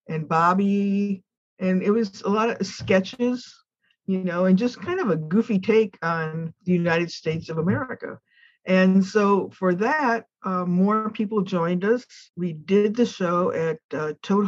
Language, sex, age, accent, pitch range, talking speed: English, female, 60-79, American, 165-200 Hz, 165 wpm